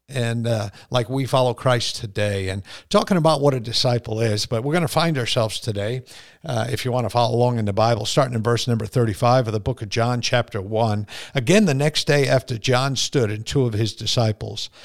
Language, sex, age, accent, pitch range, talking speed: English, male, 50-69, American, 115-145 Hz, 220 wpm